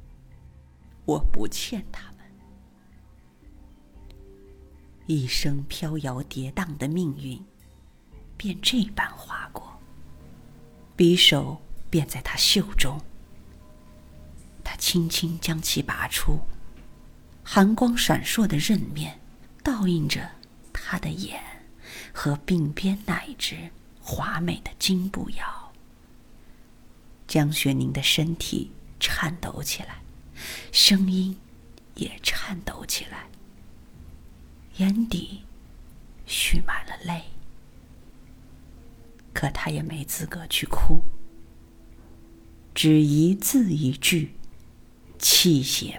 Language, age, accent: Chinese, 50-69, native